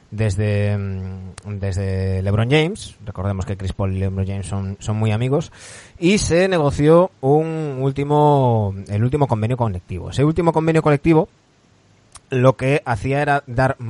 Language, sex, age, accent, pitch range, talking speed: Spanish, male, 20-39, Spanish, 100-135 Hz, 145 wpm